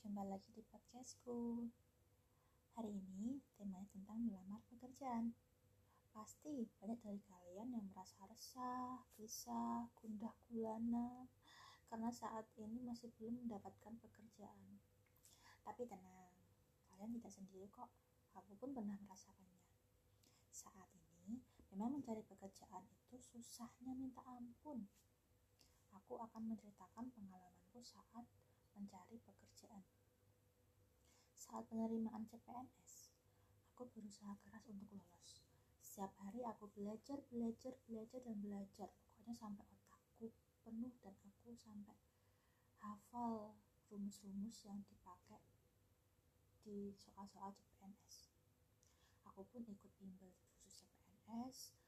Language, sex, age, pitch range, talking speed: Indonesian, female, 20-39, 180-230 Hz, 100 wpm